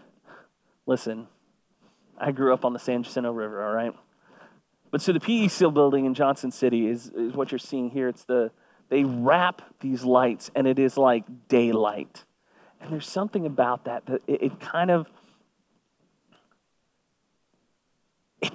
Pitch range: 130-185 Hz